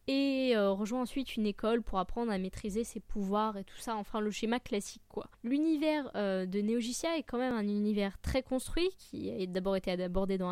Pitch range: 205-255 Hz